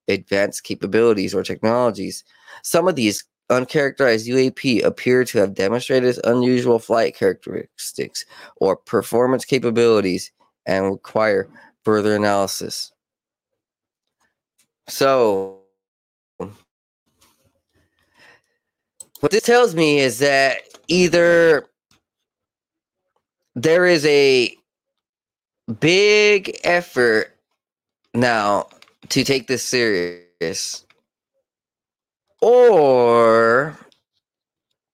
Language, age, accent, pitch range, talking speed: English, 20-39, American, 105-145 Hz, 70 wpm